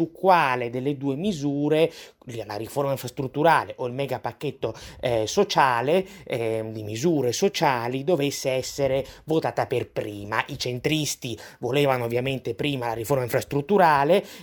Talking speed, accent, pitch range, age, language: 130 wpm, native, 125-160 Hz, 30-49, Italian